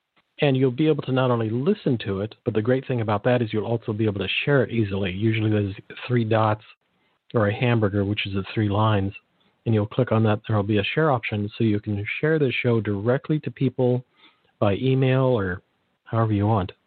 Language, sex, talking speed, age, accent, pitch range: English, male, 220 wpm, 50-69, American, 105-125 Hz